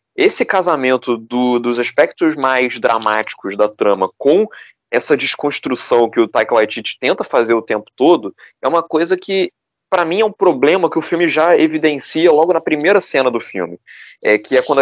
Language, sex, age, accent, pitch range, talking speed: Portuguese, male, 20-39, Brazilian, 130-215 Hz, 175 wpm